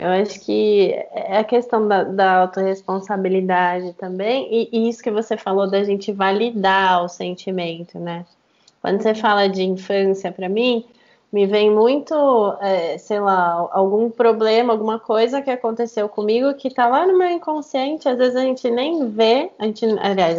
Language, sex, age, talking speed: Portuguese, female, 20-39, 160 wpm